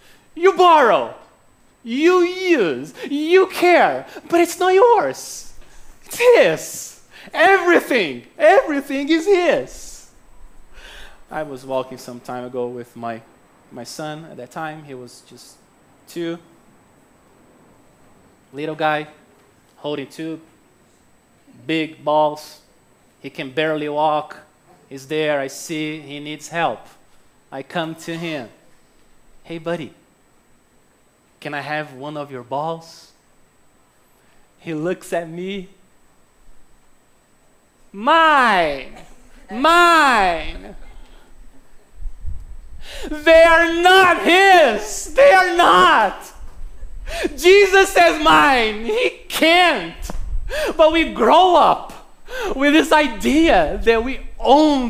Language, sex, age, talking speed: English, male, 30-49, 100 wpm